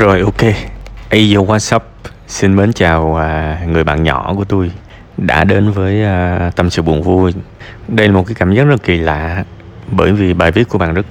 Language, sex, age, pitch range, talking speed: Vietnamese, male, 20-39, 85-105 Hz, 190 wpm